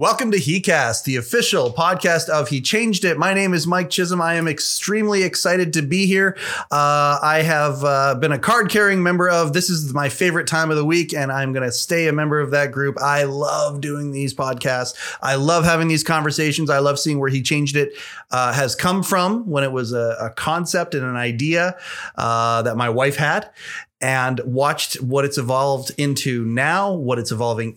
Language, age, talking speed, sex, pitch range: English, 30-49, 205 wpm, male, 135-180 Hz